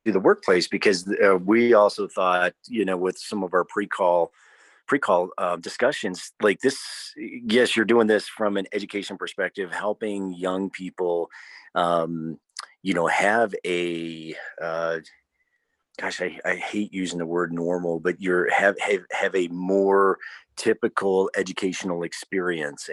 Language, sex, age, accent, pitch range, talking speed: English, male, 40-59, American, 85-100 Hz, 140 wpm